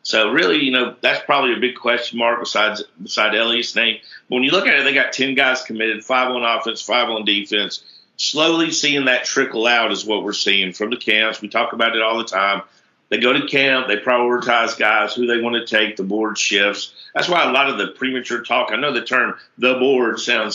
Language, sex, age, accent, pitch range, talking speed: English, male, 50-69, American, 110-130 Hz, 235 wpm